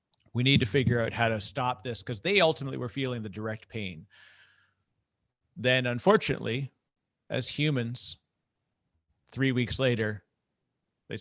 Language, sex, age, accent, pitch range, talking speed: English, male, 40-59, American, 105-135 Hz, 135 wpm